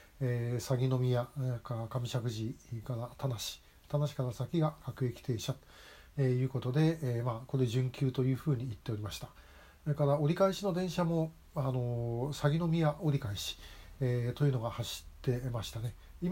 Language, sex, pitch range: Japanese, male, 120-150 Hz